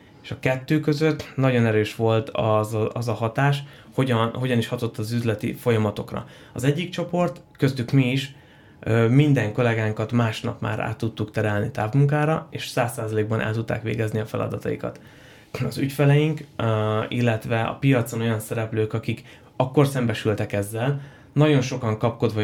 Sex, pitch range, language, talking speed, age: male, 110-140 Hz, Hungarian, 140 wpm, 20-39